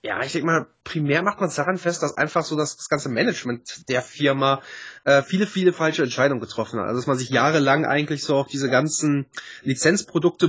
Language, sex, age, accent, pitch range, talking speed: German, male, 20-39, German, 135-180 Hz, 210 wpm